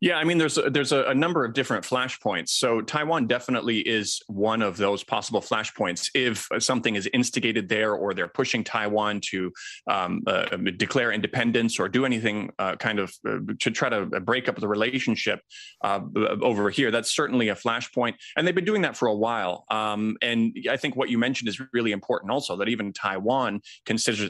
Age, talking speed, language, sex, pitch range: 30-49, 190 wpm, English, male, 110-145 Hz